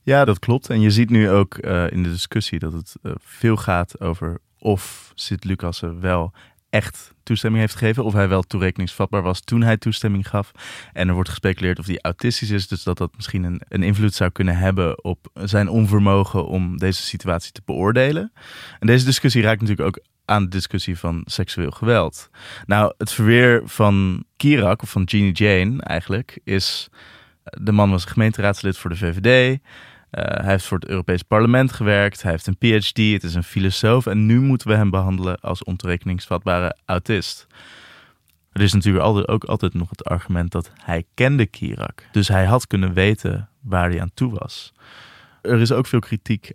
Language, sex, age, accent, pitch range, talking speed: Dutch, male, 20-39, Dutch, 90-110 Hz, 185 wpm